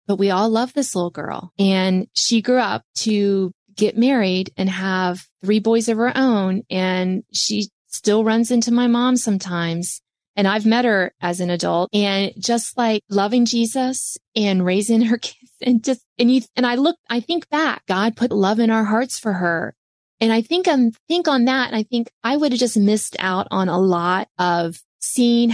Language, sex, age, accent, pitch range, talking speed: English, female, 20-39, American, 185-230 Hz, 195 wpm